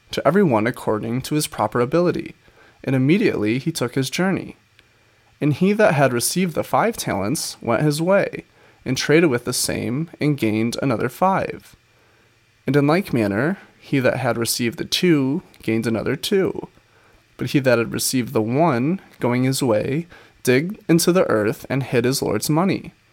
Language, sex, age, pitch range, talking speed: English, male, 20-39, 115-160 Hz, 170 wpm